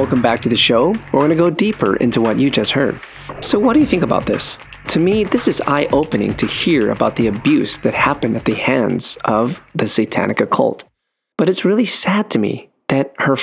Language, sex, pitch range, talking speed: English, male, 115-155 Hz, 225 wpm